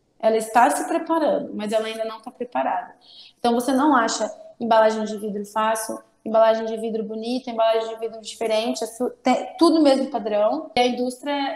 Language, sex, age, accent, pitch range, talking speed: Portuguese, female, 20-39, Brazilian, 225-265 Hz, 170 wpm